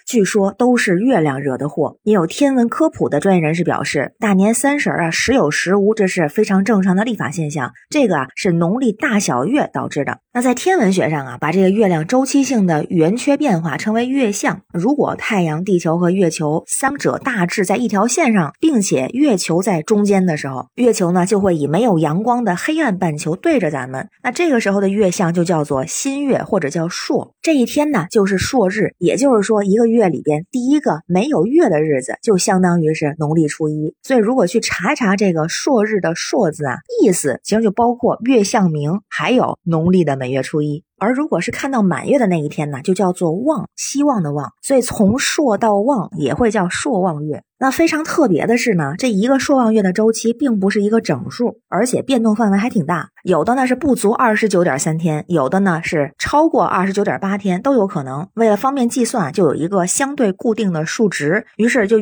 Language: Chinese